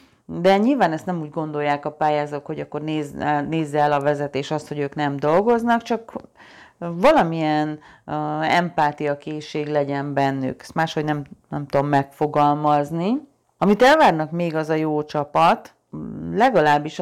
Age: 40-59